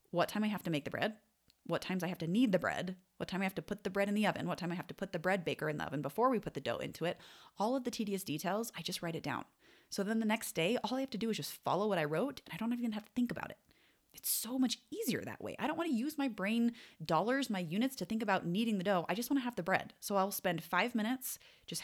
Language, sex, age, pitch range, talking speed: English, female, 30-49, 175-230 Hz, 315 wpm